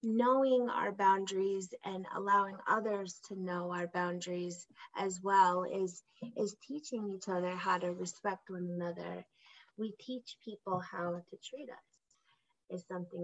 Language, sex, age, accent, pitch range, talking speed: English, female, 20-39, American, 180-210 Hz, 140 wpm